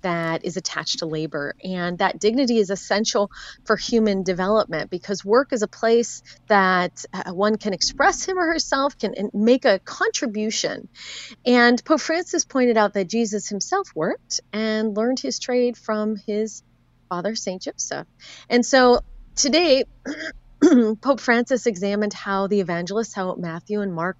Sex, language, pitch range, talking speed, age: female, English, 190-245 Hz, 150 wpm, 30-49